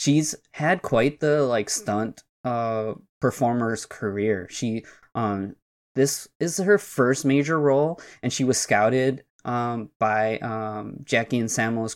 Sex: male